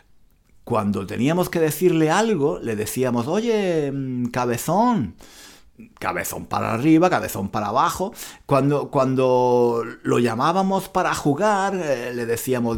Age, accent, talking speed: 60-79, Spanish, 115 wpm